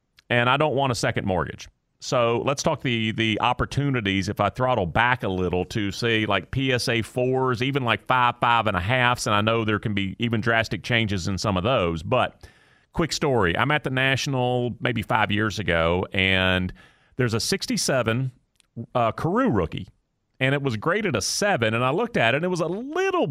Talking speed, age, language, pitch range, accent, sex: 200 wpm, 40-59, English, 110-140 Hz, American, male